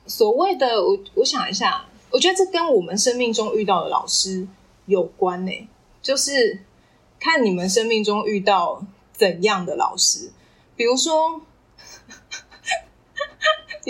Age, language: 20-39, Chinese